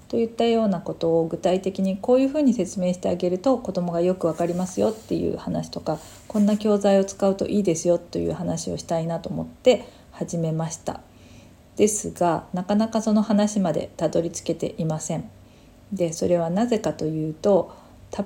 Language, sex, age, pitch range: Japanese, female, 40-59, 160-205 Hz